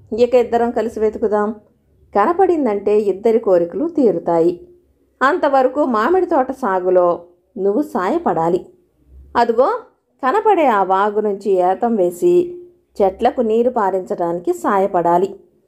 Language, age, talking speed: Telugu, 50-69, 95 wpm